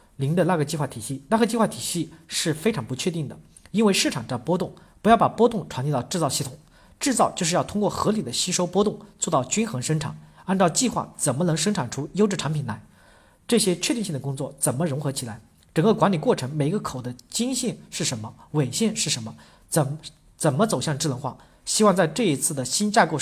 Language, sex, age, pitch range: Chinese, male, 50-69, 135-190 Hz